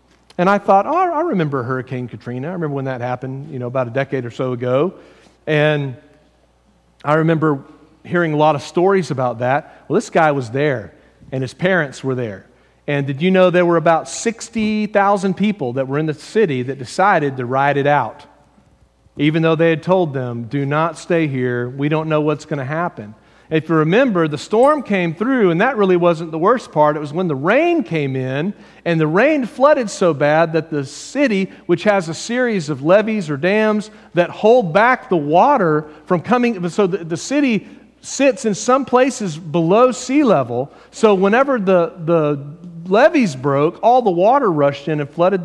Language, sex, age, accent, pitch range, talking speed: English, male, 40-59, American, 145-200 Hz, 195 wpm